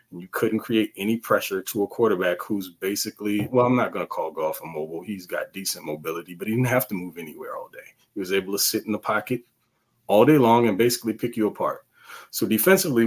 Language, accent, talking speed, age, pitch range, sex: English, American, 235 wpm, 30-49, 105-125 Hz, male